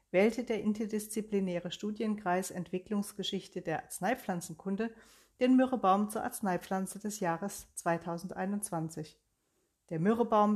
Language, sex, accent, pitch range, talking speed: German, female, German, 175-215 Hz, 90 wpm